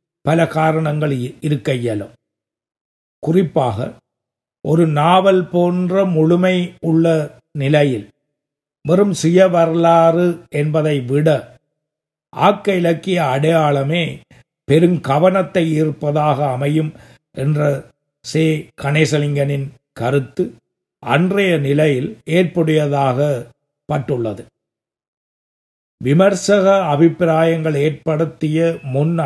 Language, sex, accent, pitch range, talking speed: Tamil, male, native, 140-170 Hz, 65 wpm